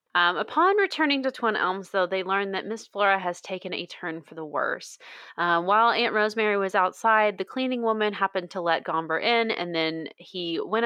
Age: 30-49